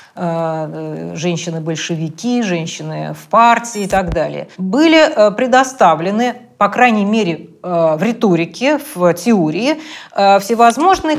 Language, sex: Russian, female